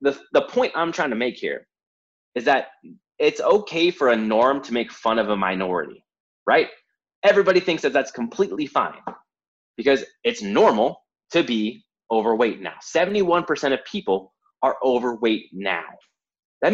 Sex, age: male, 20-39